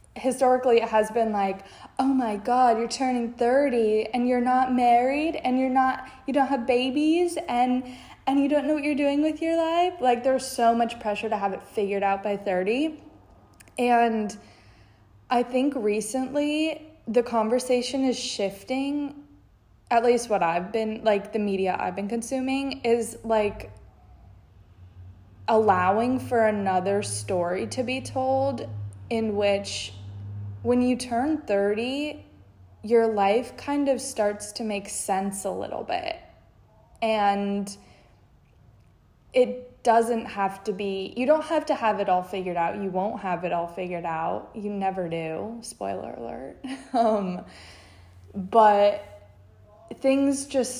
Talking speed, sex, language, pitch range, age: 145 wpm, female, English, 190-260 Hz, 20-39